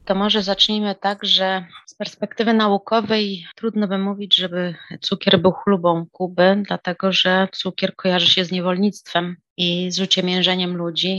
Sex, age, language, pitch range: female, 30-49, Polish, 170-200 Hz